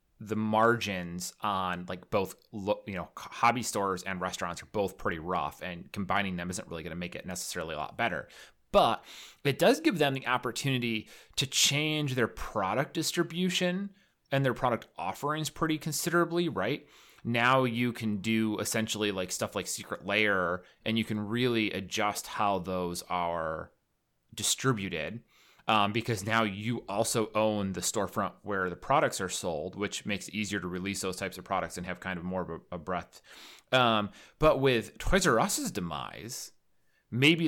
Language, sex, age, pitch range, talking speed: English, male, 30-49, 95-130 Hz, 170 wpm